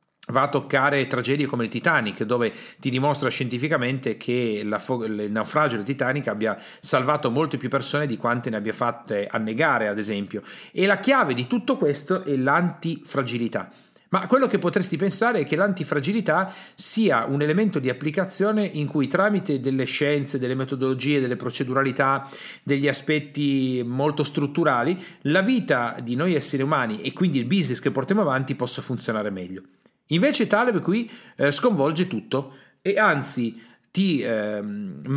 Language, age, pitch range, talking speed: Italian, 40-59, 125-185 Hz, 155 wpm